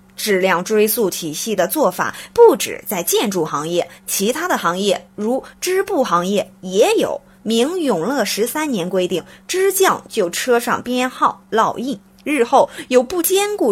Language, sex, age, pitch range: Chinese, female, 20-39, 190-290 Hz